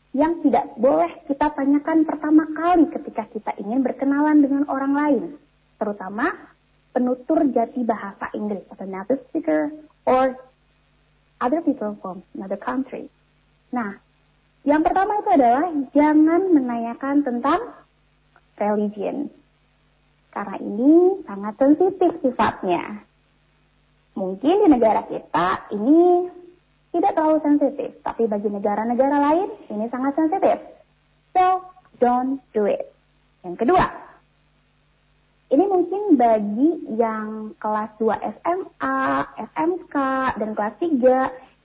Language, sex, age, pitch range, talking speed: Indonesian, female, 20-39, 225-315 Hz, 105 wpm